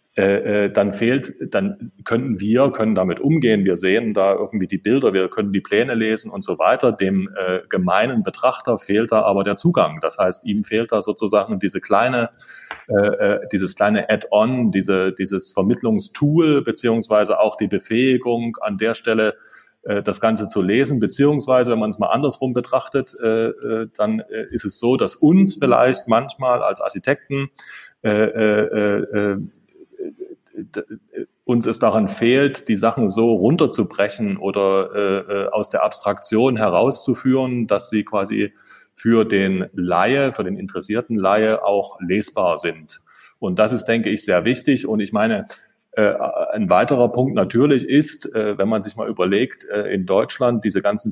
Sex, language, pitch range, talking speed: male, German, 100-125 Hz, 155 wpm